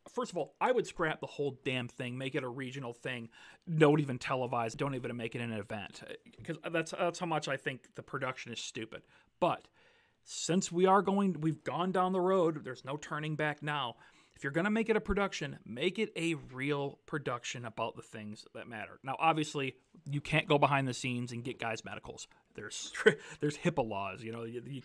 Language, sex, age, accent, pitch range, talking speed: English, male, 40-59, American, 130-165 Hz, 210 wpm